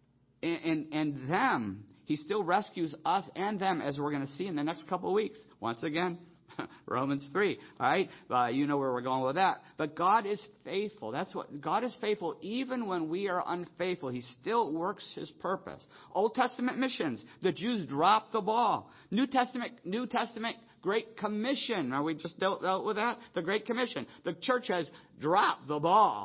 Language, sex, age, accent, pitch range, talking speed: English, male, 50-69, American, 155-220 Hz, 190 wpm